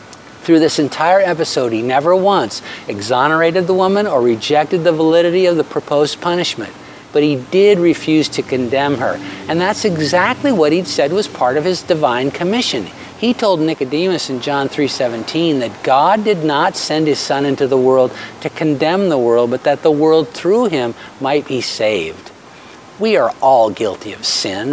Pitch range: 130-165 Hz